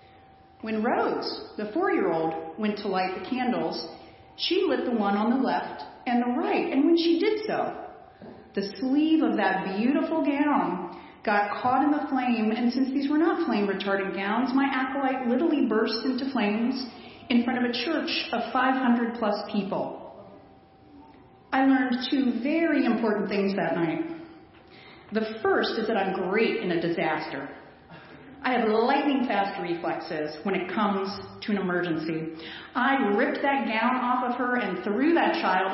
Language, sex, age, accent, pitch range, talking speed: English, female, 40-59, American, 200-280 Hz, 160 wpm